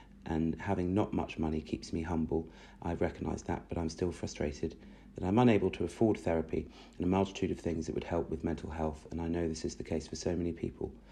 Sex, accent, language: male, British, English